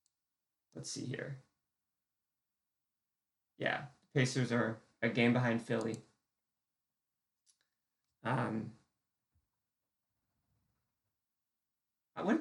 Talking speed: 60 wpm